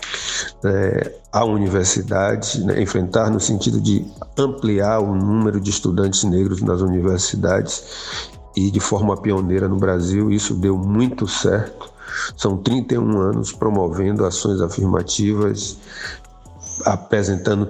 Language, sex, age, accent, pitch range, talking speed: Portuguese, male, 50-69, Brazilian, 95-110 Hz, 110 wpm